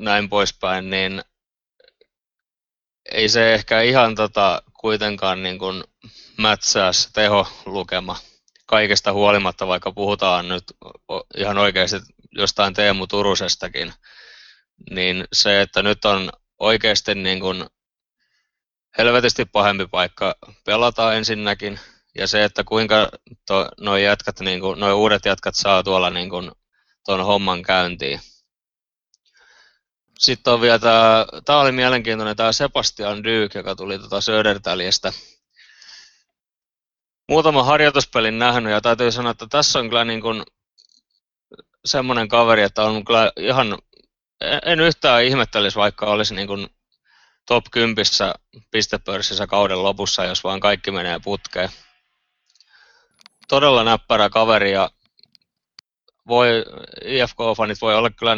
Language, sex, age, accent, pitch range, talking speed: Finnish, male, 20-39, native, 95-115 Hz, 110 wpm